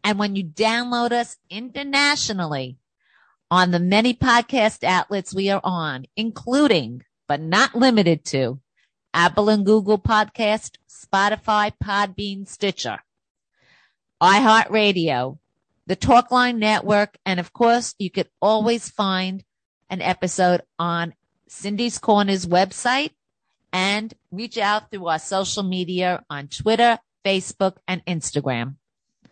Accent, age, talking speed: American, 40-59, 115 wpm